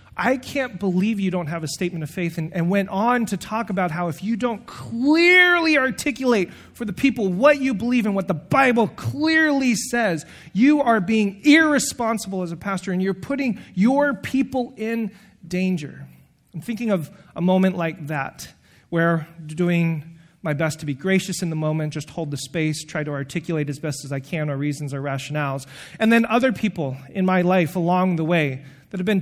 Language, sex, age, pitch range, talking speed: English, male, 30-49, 160-225 Hz, 195 wpm